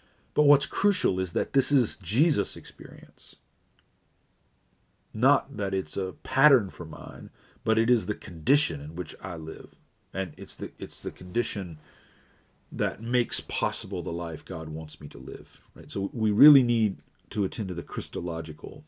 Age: 40-59